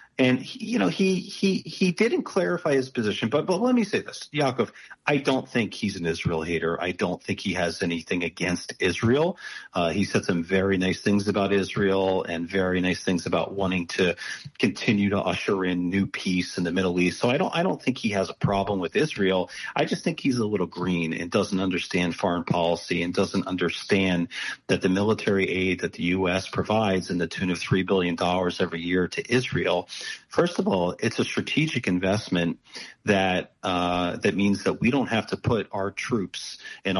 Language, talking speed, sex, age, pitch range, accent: English, 200 wpm, male, 40-59, 90-105 Hz, American